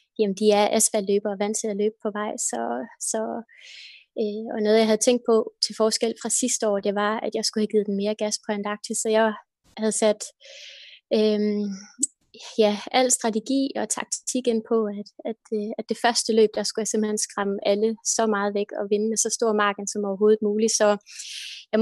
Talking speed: 205 wpm